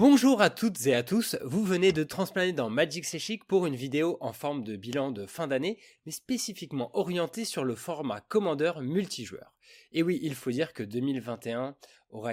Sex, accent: male, French